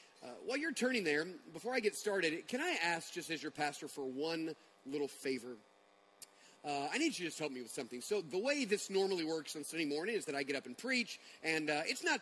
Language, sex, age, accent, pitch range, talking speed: English, male, 30-49, American, 160-225 Hz, 245 wpm